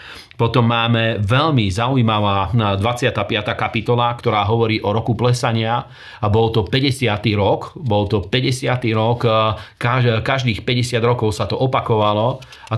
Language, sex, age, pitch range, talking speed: Slovak, male, 40-59, 110-125 Hz, 125 wpm